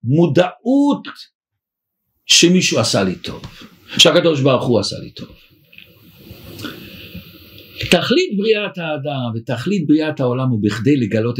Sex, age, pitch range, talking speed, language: male, 60-79, 145-215 Hz, 105 wpm, Hebrew